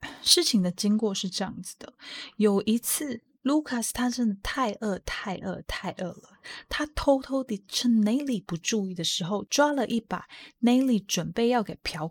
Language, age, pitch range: Chinese, 20-39, 185-240 Hz